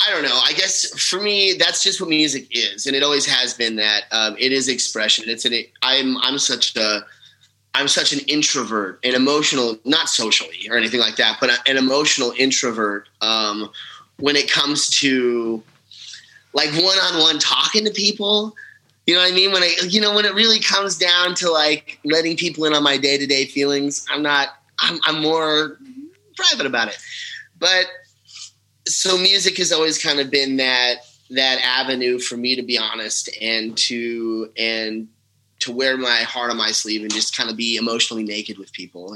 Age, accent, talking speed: 30-49, American, 185 wpm